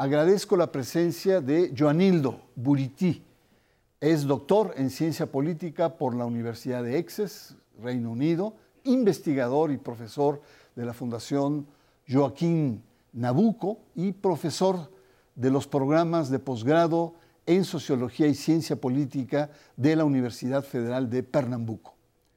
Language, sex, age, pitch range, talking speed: Spanish, male, 60-79, 125-170 Hz, 120 wpm